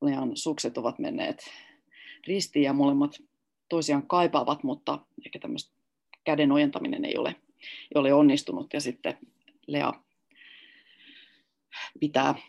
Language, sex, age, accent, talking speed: Finnish, female, 30-49, native, 105 wpm